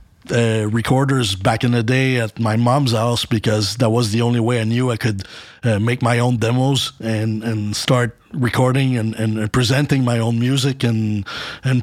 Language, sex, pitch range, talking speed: English, male, 115-130 Hz, 195 wpm